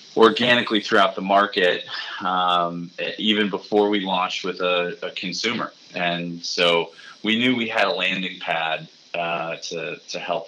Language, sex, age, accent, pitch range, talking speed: English, male, 20-39, American, 85-105 Hz, 150 wpm